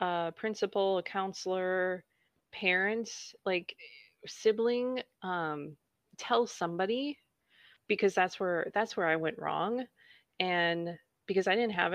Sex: female